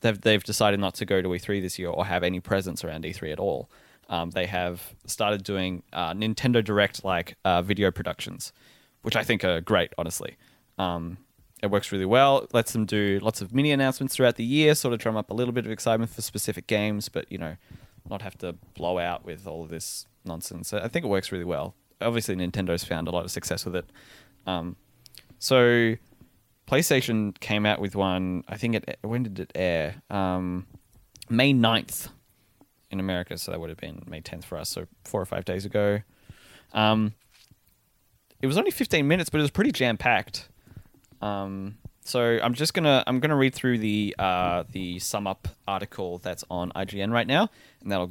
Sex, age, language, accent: male, 20-39, English, Australian